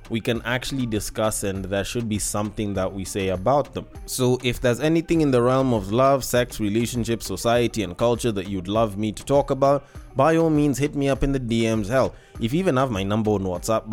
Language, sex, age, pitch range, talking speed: English, male, 20-39, 105-135 Hz, 230 wpm